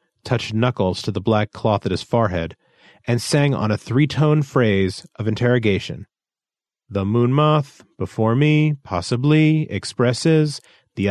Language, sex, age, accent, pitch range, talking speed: English, male, 40-59, American, 100-150 Hz, 130 wpm